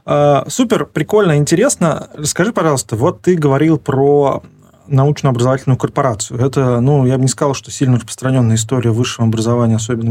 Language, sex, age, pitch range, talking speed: Russian, male, 20-39, 120-150 Hz, 140 wpm